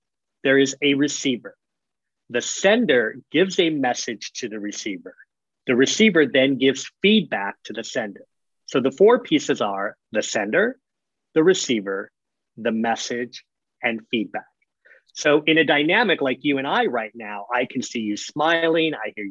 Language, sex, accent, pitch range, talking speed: English, male, American, 120-160 Hz, 155 wpm